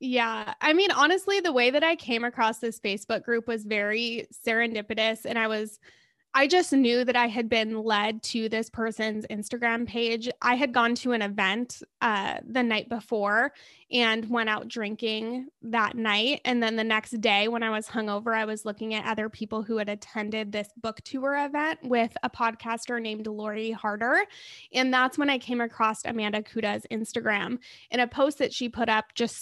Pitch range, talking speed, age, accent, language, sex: 220-260 Hz, 190 wpm, 20-39, American, English, female